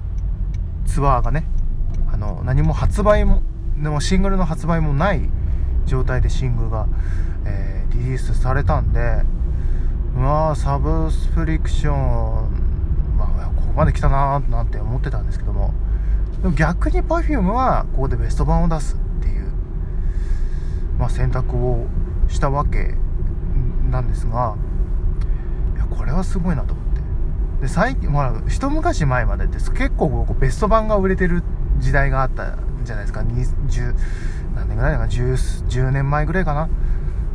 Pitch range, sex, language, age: 85-130 Hz, male, Japanese, 20-39